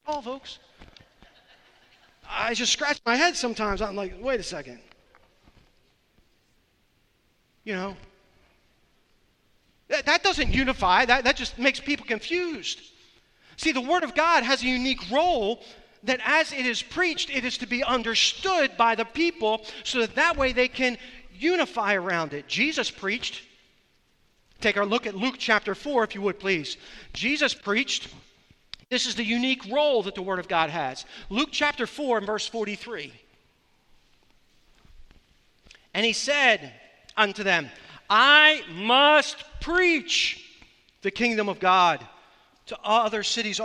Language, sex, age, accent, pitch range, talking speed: English, male, 40-59, American, 195-280 Hz, 140 wpm